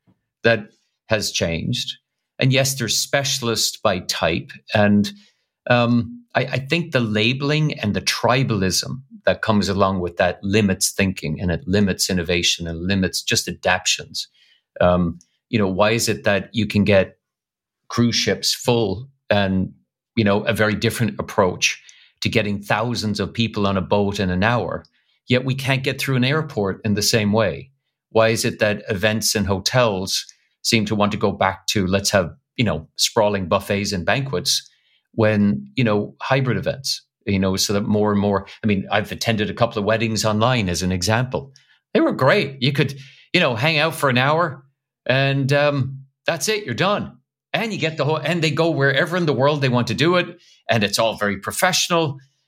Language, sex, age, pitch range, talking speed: English, male, 50-69, 100-135 Hz, 185 wpm